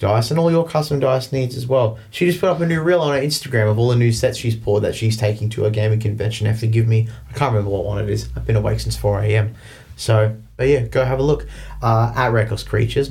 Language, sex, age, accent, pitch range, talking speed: English, male, 20-39, Australian, 110-125 Hz, 280 wpm